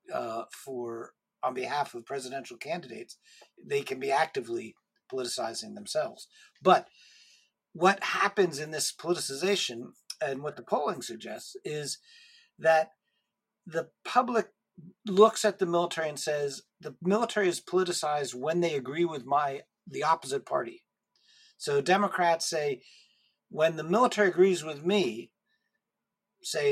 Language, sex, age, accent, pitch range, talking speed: English, male, 50-69, American, 150-215 Hz, 125 wpm